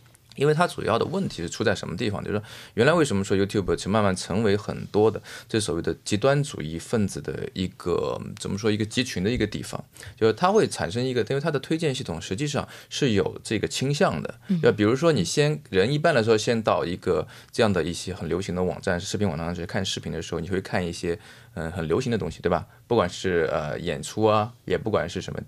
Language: Chinese